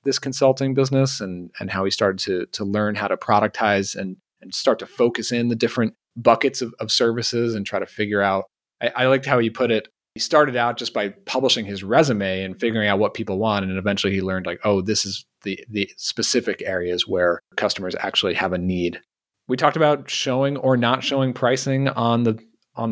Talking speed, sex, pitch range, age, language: 210 wpm, male, 100-125 Hz, 30-49, English